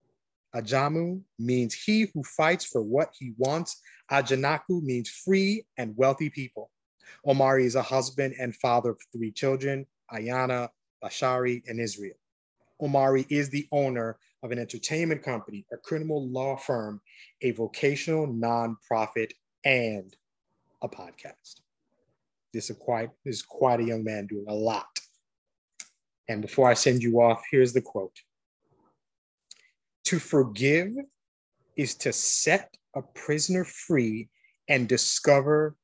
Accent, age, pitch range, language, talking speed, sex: American, 30-49, 115-140 Hz, English, 125 wpm, male